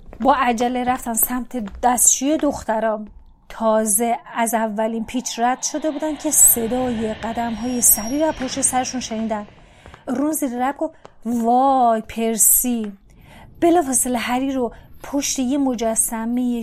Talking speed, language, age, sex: 125 wpm, Persian, 30-49, female